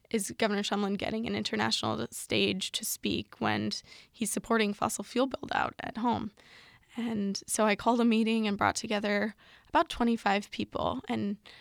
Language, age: English, 20-39